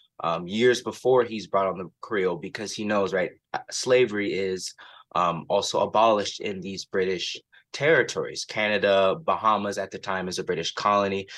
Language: English